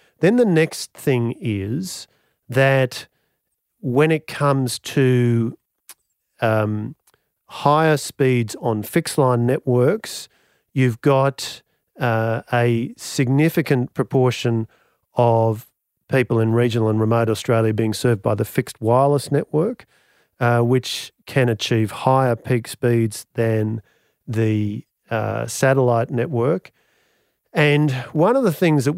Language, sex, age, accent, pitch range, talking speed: English, male, 40-59, Australian, 115-135 Hz, 115 wpm